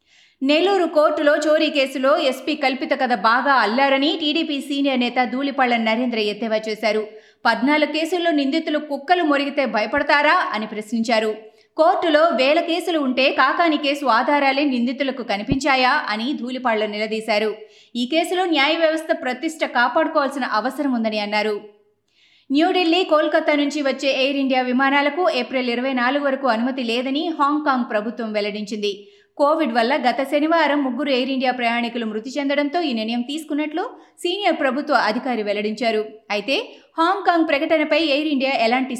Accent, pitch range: native, 230-300 Hz